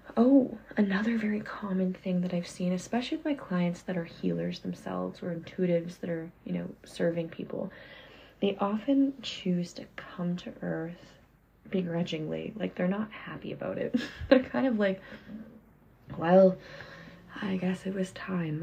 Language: English